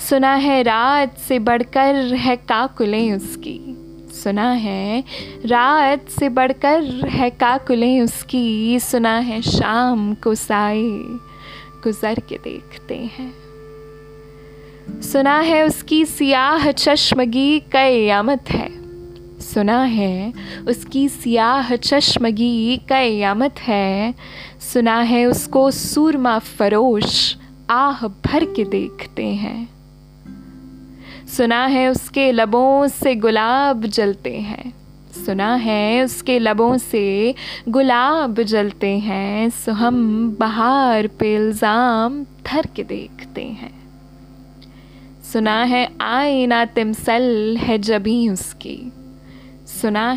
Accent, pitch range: native, 205-255 Hz